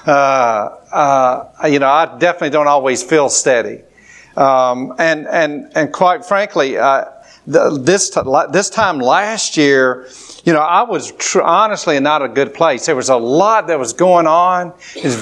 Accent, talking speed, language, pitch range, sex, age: American, 170 wpm, English, 150-195 Hz, male, 50-69